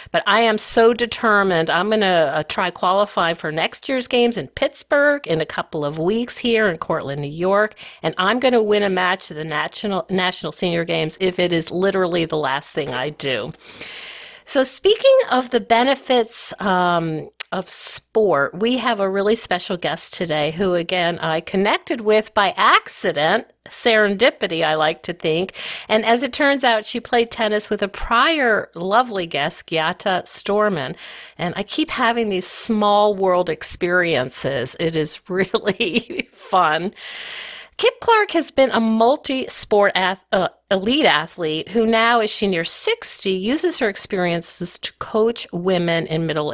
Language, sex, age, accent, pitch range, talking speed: English, female, 50-69, American, 170-240 Hz, 160 wpm